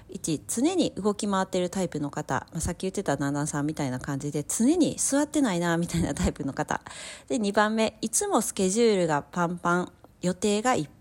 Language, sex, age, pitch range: Japanese, female, 40-59, 155-235 Hz